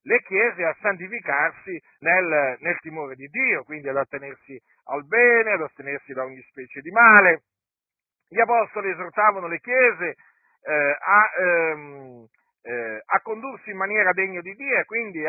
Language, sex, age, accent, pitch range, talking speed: Italian, male, 50-69, native, 160-220 Hz, 155 wpm